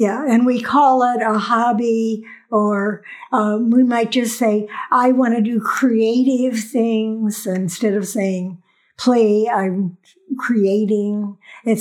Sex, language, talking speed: female, English, 130 wpm